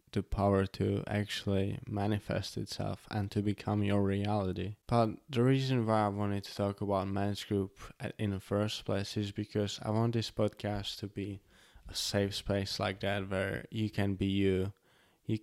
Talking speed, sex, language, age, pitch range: 175 wpm, male, English, 20-39, 100-110 Hz